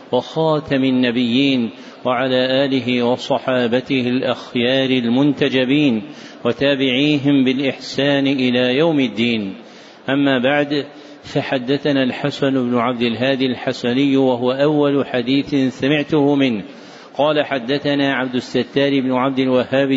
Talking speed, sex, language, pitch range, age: 95 wpm, male, Arabic, 130-145 Hz, 50-69